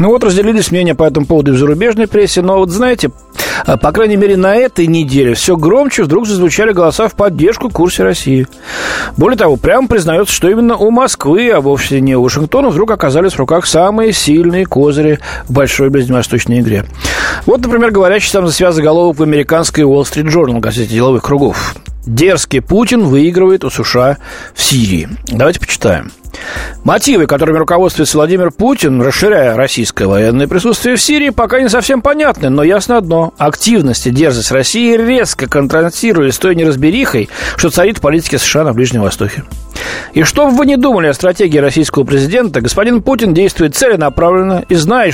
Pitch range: 135-210 Hz